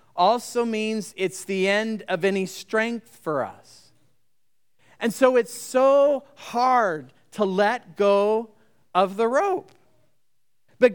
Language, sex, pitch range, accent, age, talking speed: English, male, 190-235 Hz, American, 40-59, 120 wpm